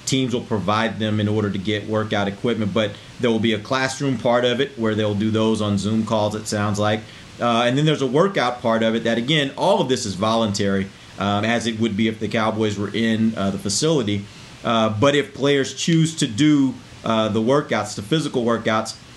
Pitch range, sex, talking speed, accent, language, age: 105-130 Hz, male, 220 wpm, American, English, 30-49